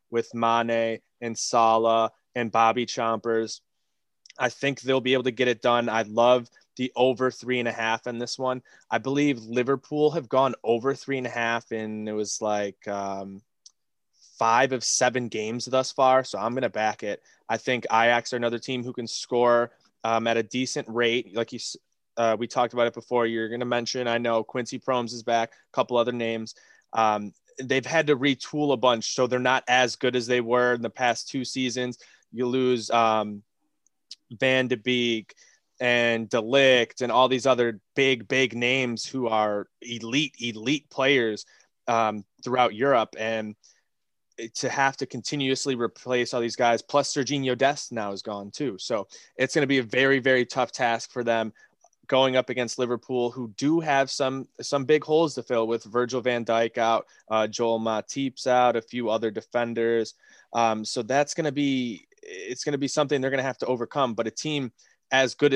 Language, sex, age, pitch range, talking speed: English, male, 20-39, 115-130 Hz, 190 wpm